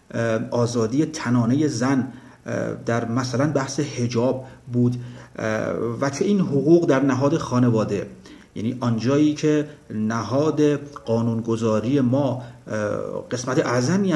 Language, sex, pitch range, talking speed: Persian, male, 120-150 Hz, 95 wpm